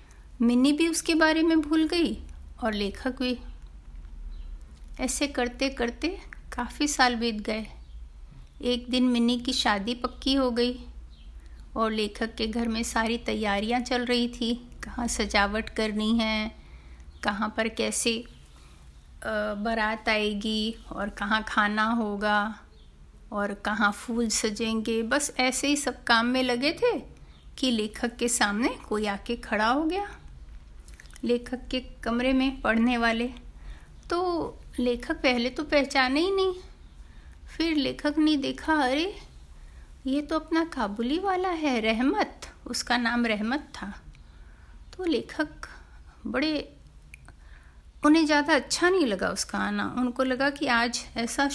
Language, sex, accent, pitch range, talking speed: Hindi, female, native, 215-280 Hz, 130 wpm